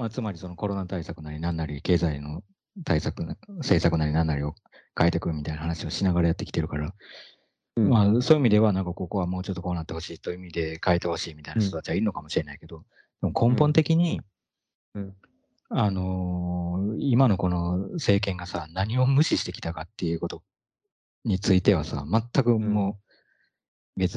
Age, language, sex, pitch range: 40-59, Japanese, male, 85-115 Hz